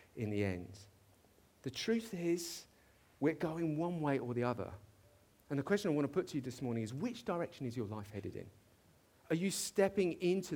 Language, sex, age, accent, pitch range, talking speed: English, male, 40-59, British, 100-135 Hz, 205 wpm